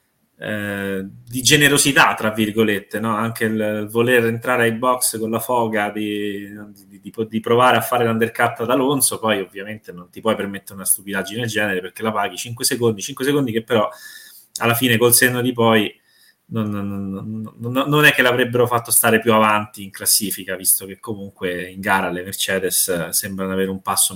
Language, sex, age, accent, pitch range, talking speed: Italian, male, 20-39, native, 100-120 Hz, 185 wpm